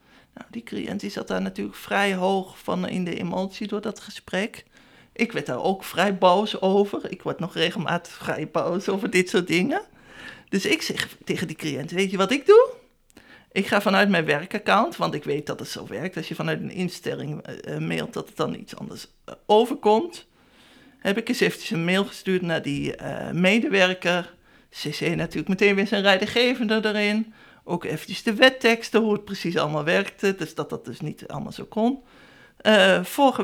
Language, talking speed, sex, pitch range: Dutch, 190 wpm, male, 180-230 Hz